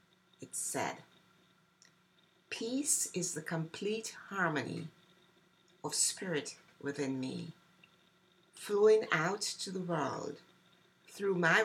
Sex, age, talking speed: female, 60-79, 95 wpm